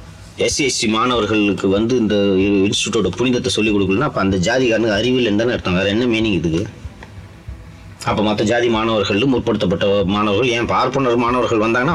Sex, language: male, Tamil